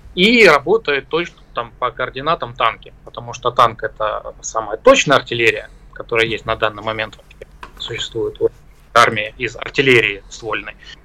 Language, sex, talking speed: Russian, male, 130 wpm